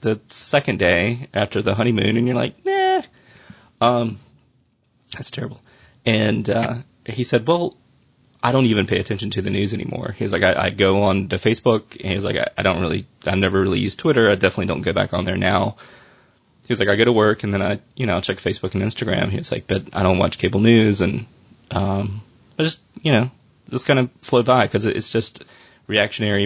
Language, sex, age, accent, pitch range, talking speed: English, male, 20-39, American, 95-125 Hz, 220 wpm